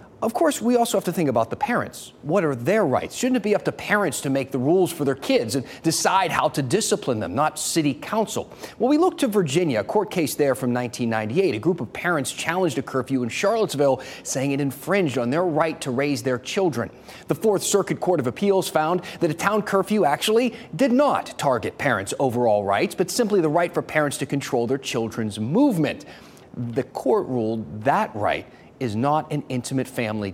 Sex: male